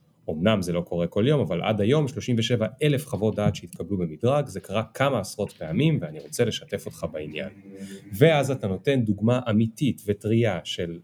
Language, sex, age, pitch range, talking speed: Hebrew, male, 30-49, 95-130 Hz, 175 wpm